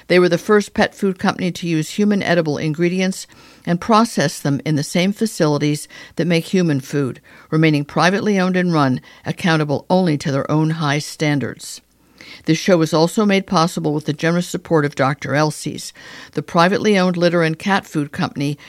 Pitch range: 150-185 Hz